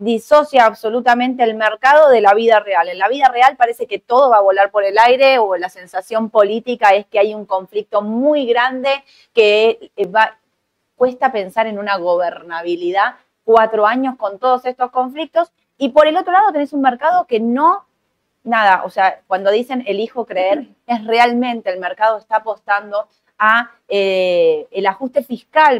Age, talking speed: 30-49, 165 wpm